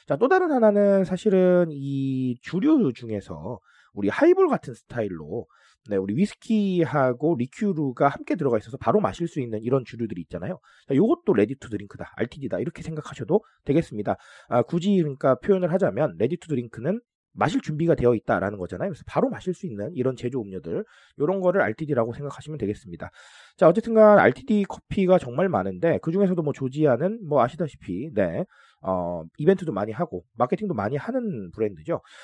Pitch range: 120-190 Hz